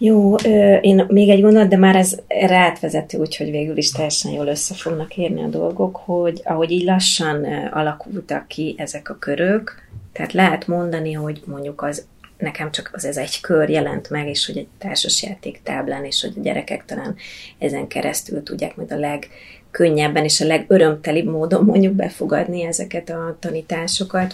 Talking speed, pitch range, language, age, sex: 160 wpm, 155-190 Hz, Hungarian, 30-49, female